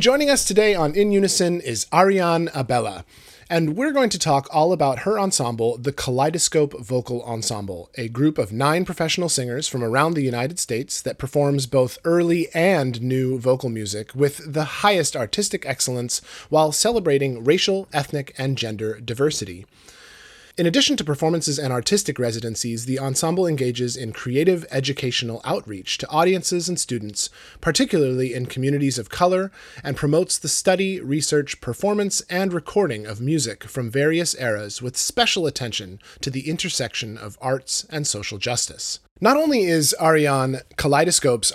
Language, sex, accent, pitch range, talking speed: English, male, American, 120-170 Hz, 150 wpm